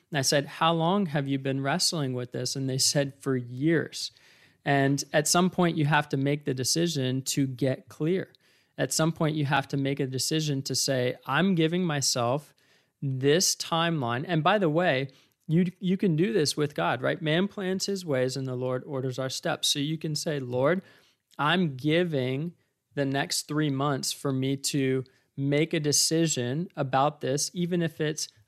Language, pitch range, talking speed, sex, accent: English, 135-160 Hz, 190 wpm, male, American